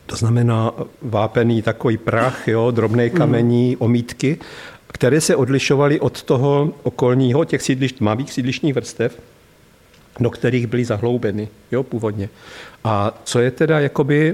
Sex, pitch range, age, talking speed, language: male, 115-130 Hz, 50-69, 130 wpm, Czech